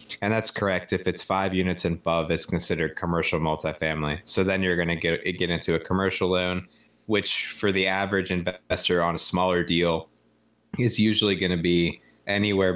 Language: English